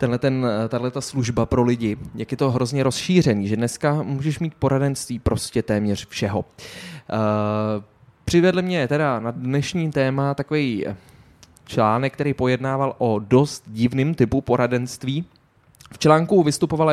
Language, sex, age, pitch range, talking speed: Czech, male, 20-39, 115-150 Hz, 130 wpm